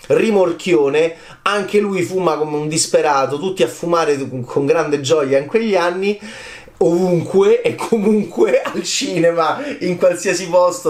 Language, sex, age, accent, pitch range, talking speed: Italian, male, 30-49, native, 135-200 Hz, 130 wpm